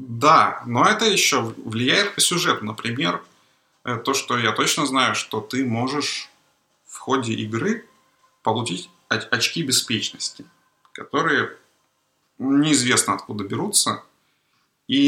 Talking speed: 105 wpm